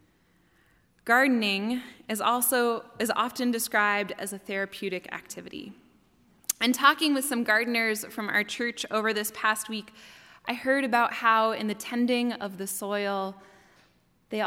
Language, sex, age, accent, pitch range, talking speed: English, female, 20-39, American, 195-235 Hz, 135 wpm